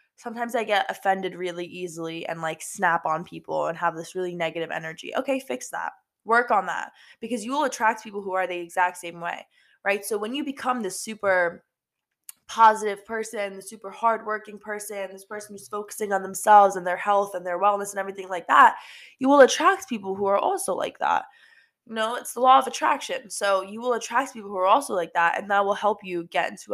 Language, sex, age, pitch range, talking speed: English, female, 20-39, 180-220 Hz, 215 wpm